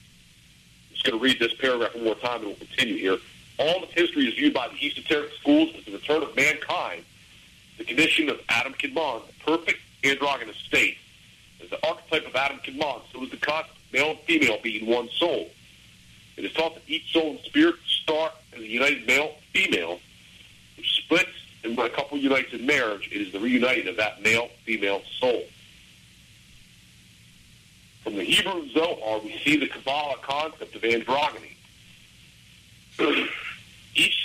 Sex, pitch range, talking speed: male, 110-180 Hz, 170 wpm